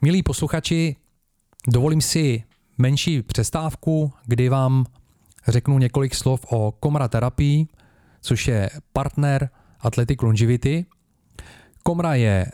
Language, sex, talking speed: Czech, male, 100 wpm